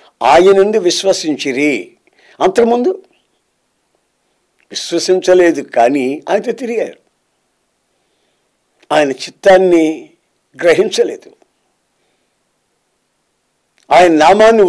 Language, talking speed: Telugu, 55 wpm